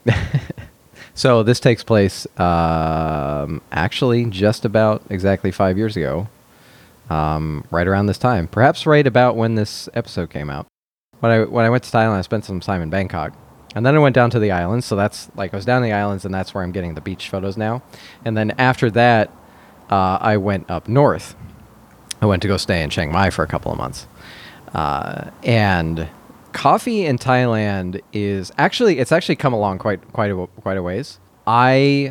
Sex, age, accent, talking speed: male, 30-49, American, 190 wpm